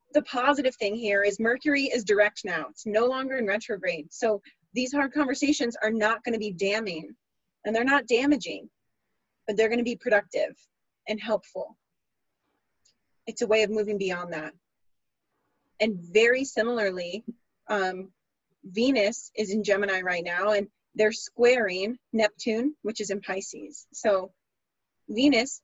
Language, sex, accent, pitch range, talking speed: English, female, American, 200-255 Hz, 145 wpm